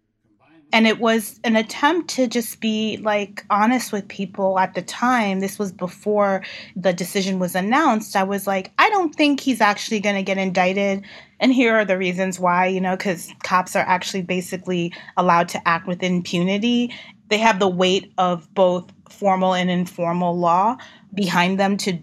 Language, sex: English, female